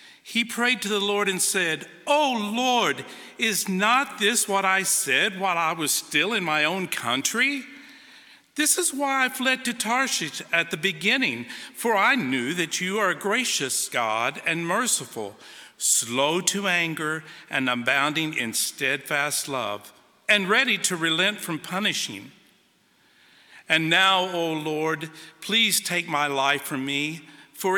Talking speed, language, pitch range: 150 wpm, English, 150-215 Hz